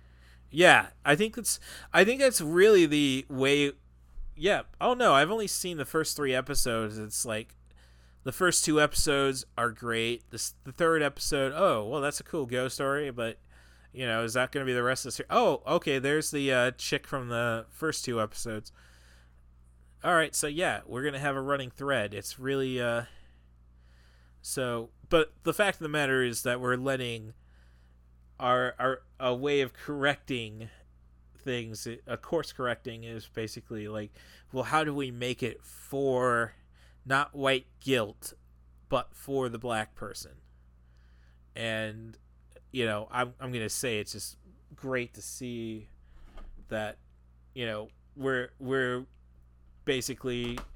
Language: English